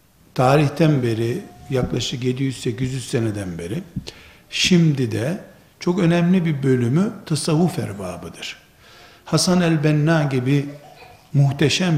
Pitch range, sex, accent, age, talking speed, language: 135-170 Hz, male, native, 60-79, 95 wpm, Turkish